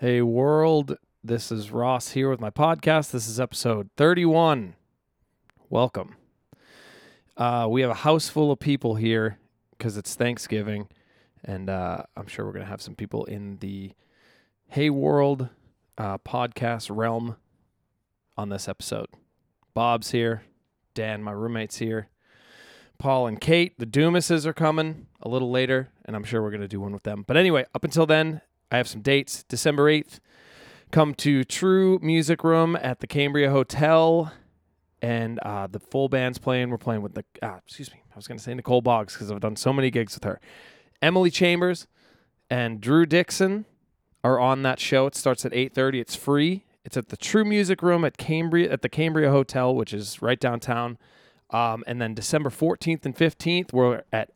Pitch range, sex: 110-150 Hz, male